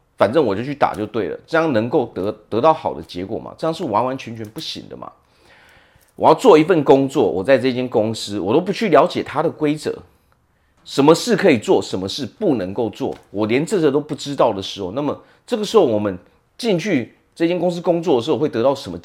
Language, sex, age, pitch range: Chinese, male, 40-59, 100-150 Hz